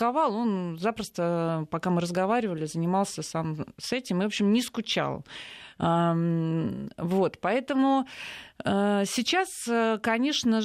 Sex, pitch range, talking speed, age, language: female, 175-235 Hz, 100 wpm, 30-49, Russian